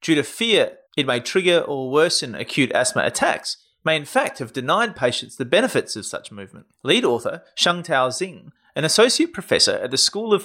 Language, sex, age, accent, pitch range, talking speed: English, male, 30-49, Australian, 135-200 Hz, 190 wpm